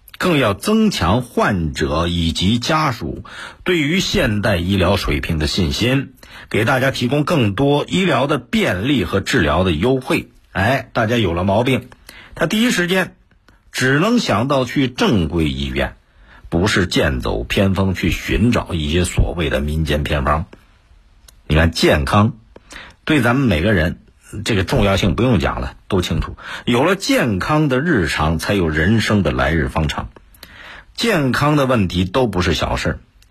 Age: 50-69